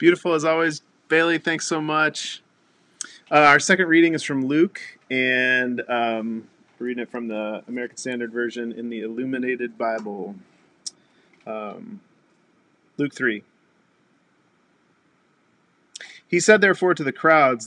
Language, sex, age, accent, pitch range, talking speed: English, male, 40-59, American, 125-180 Hz, 125 wpm